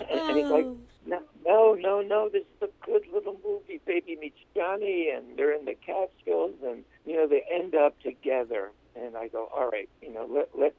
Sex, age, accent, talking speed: male, 60-79, American, 205 wpm